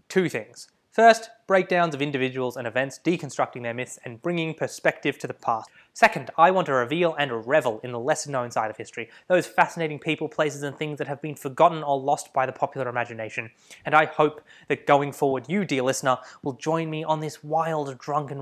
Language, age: English, 20-39